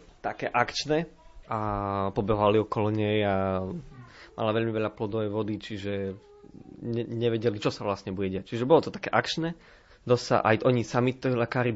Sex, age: male, 20-39